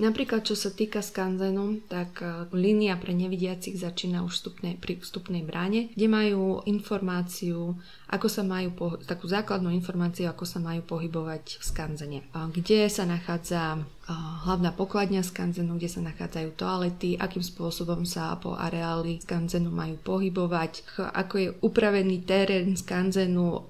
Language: Slovak